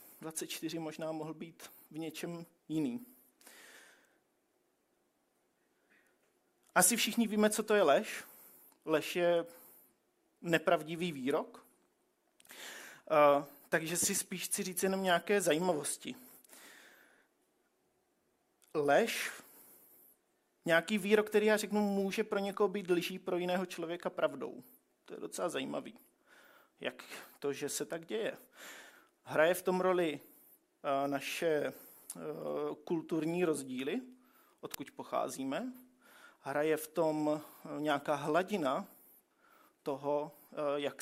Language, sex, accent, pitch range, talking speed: Czech, male, native, 150-205 Hz, 100 wpm